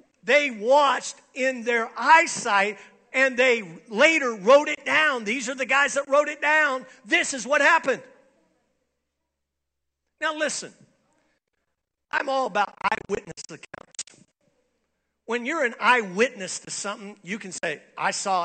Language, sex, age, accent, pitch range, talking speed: English, male, 50-69, American, 190-270 Hz, 135 wpm